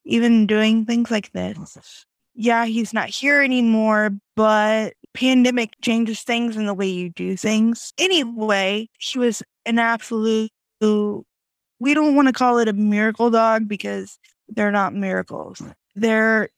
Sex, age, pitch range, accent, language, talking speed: female, 20-39, 205-240 Hz, American, English, 140 wpm